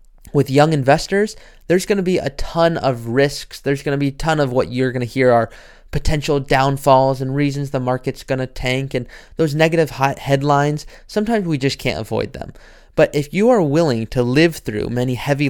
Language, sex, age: English, male, 20-39